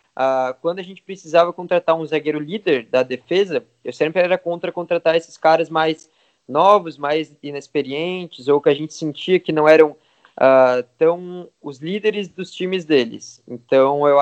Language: Portuguese